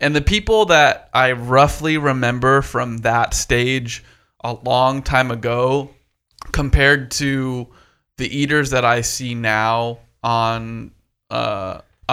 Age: 20-39